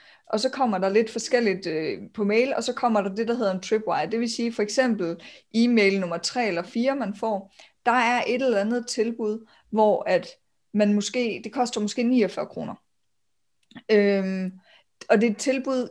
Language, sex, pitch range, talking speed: Danish, female, 210-250 Hz, 190 wpm